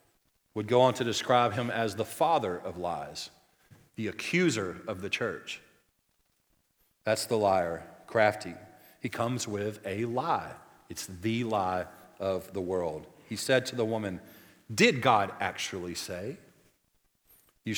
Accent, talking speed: American, 140 wpm